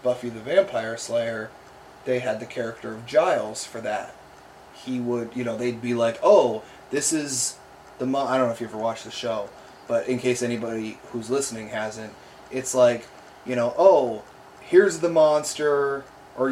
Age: 20-39